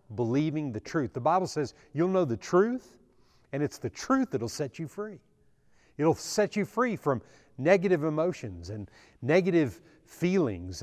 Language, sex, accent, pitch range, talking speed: English, male, American, 115-160 Hz, 155 wpm